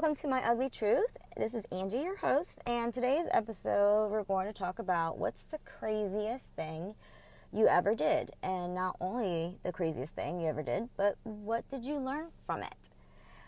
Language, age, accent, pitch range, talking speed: English, 20-39, American, 165-255 Hz, 185 wpm